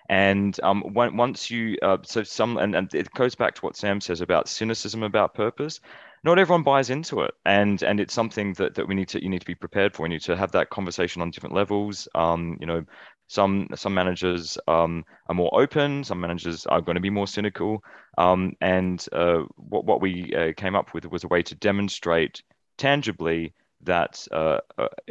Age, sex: 20-39, male